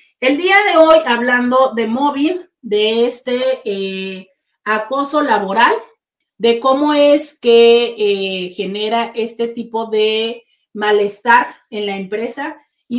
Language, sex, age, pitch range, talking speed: Spanish, female, 40-59, 215-290 Hz, 120 wpm